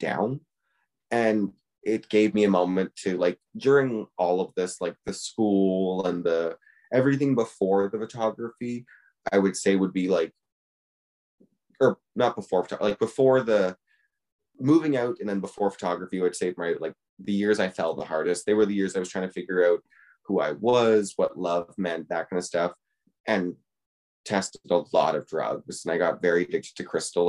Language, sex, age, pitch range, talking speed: English, male, 20-39, 95-120 Hz, 185 wpm